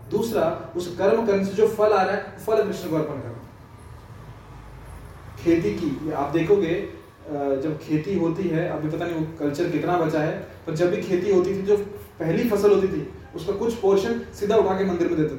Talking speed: 205 wpm